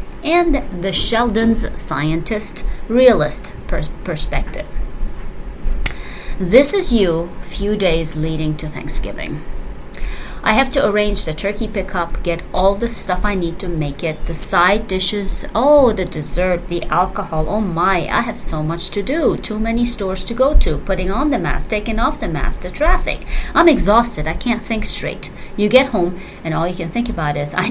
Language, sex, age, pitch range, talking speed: English, female, 30-49, 165-230 Hz, 170 wpm